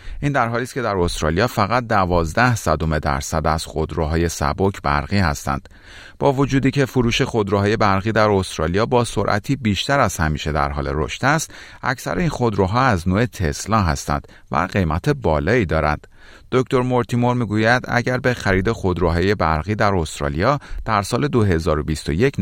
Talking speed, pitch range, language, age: 155 wpm, 80-120 Hz, Persian, 40-59